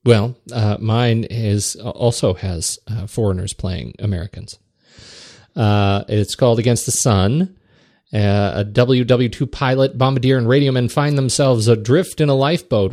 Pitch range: 100-125 Hz